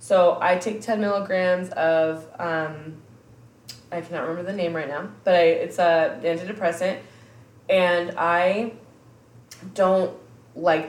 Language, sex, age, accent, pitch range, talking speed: English, female, 20-39, American, 155-190 Hz, 125 wpm